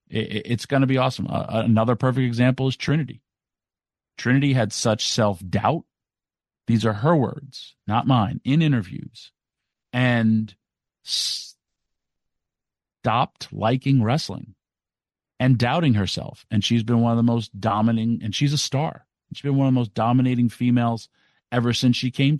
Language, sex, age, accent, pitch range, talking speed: English, male, 40-59, American, 110-125 Hz, 145 wpm